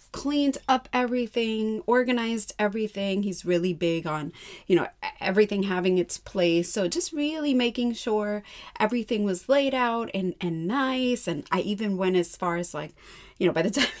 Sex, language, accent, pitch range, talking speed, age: female, English, American, 185-260 Hz, 170 wpm, 30-49